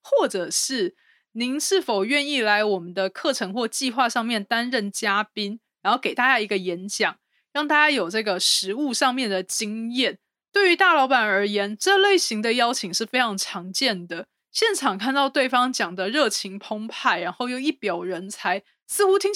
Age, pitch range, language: 20-39, 200-265 Hz, Chinese